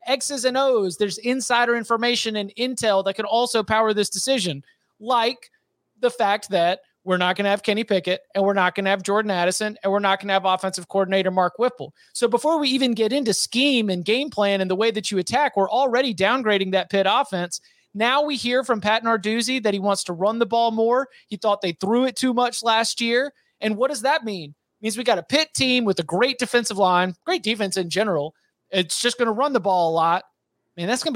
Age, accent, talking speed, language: 30-49, American, 230 wpm, English